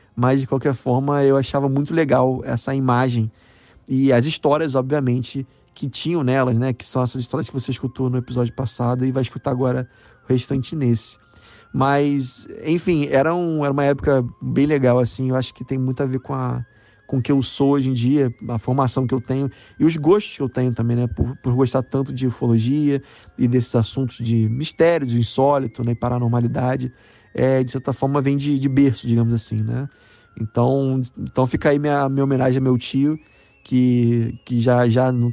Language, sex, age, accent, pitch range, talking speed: Portuguese, male, 20-39, Brazilian, 120-140 Hz, 200 wpm